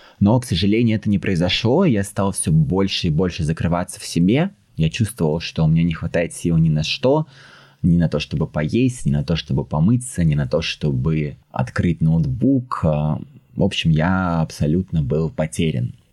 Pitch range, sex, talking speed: 80-110 Hz, male, 180 wpm